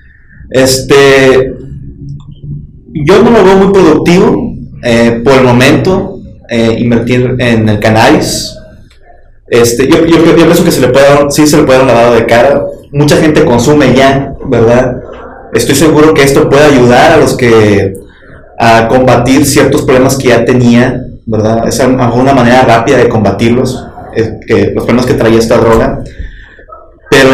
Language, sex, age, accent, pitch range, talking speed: Spanish, male, 30-49, Mexican, 115-140 Hz, 150 wpm